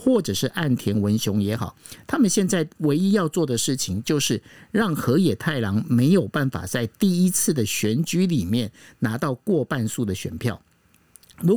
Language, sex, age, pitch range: Chinese, male, 50-69, 115-180 Hz